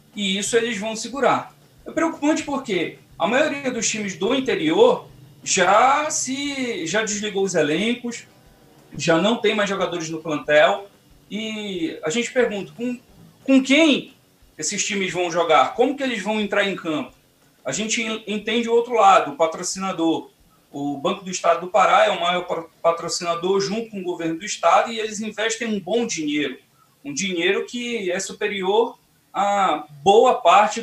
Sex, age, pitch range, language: male, 40-59, 175-235 Hz, Portuguese